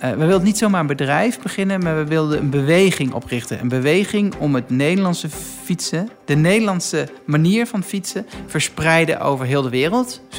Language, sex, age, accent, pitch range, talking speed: Dutch, male, 50-69, Dutch, 140-180 Hz, 180 wpm